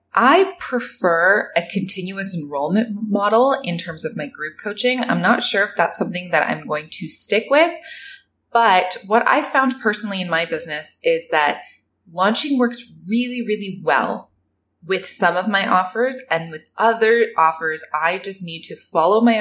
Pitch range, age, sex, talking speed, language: 165-235 Hz, 20-39, female, 165 wpm, English